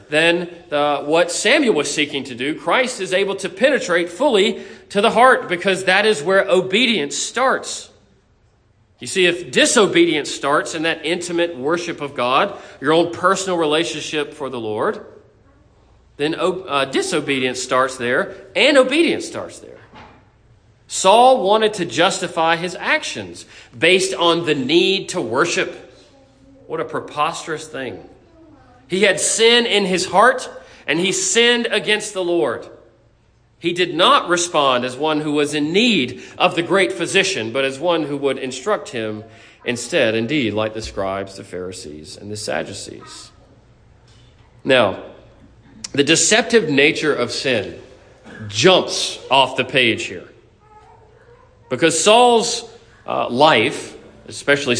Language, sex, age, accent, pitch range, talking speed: English, male, 40-59, American, 120-190 Hz, 135 wpm